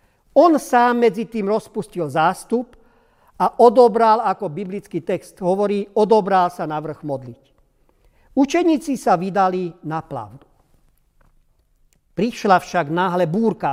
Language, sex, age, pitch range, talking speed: Slovak, male, 50-69, 185-235 Hz, 115 wpm